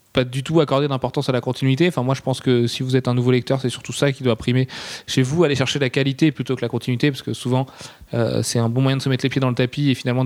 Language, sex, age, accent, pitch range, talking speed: French, male, 20-39, French, 125-145 Hz, 310 wpm